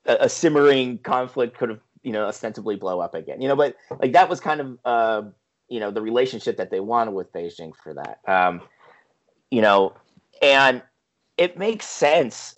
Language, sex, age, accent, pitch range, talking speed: English, male, 30-49, American, 105-140 Hz, 180 wpm